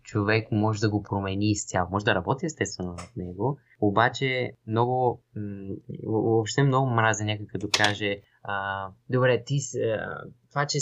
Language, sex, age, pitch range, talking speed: Bulgarian, male, 20-39, 105-140 Hz, 135 wpm